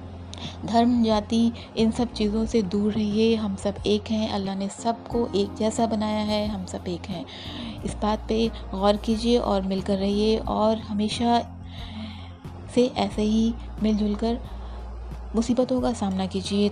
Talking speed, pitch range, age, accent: 150 wpm, 195-225 Hz, 30-49, native